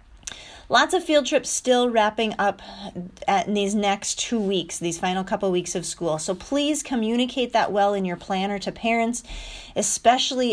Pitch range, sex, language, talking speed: 180-235 Hz, female, English, 165 wpm